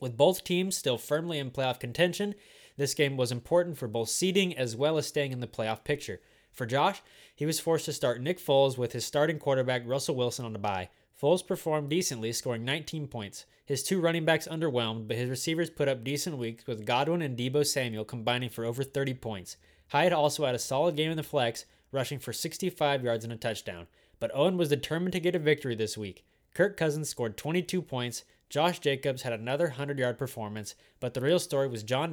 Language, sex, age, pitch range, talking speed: English, male, 20-39, 115-155 Hz, 210 wpm